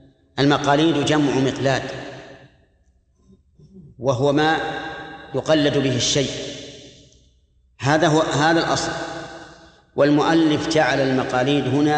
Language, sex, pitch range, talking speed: Arabic, male, 135-155 Hz, 80 wpm